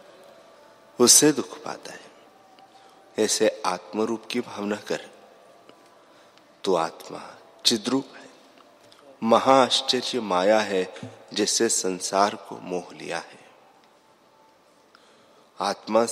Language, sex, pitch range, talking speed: Hindi, male, 95-120 Hz, 85 wpm